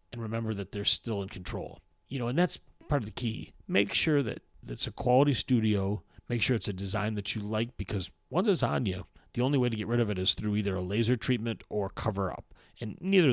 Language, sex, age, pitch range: English, male, 40-59, 105-140 Hz